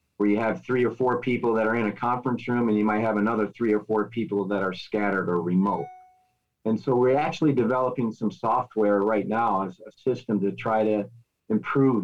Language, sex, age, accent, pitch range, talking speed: English, male, 40-59, American, 105-120 Hz, 215 wpm